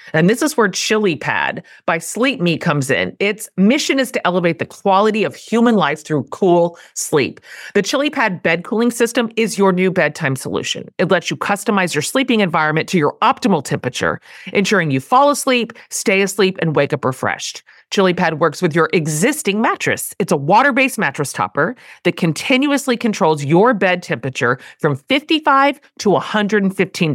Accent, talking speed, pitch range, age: American, 165 wpm, 170-235 Hz, 40-59